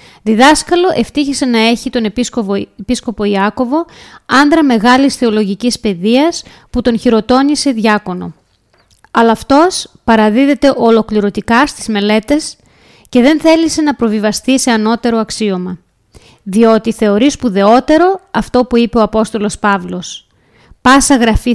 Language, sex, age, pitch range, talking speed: Greek, female, 20-39, 215-275 Hz, 115 wpm